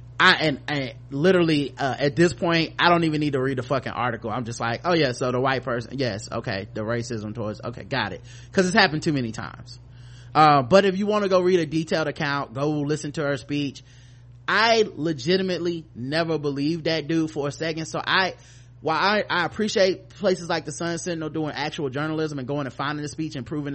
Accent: American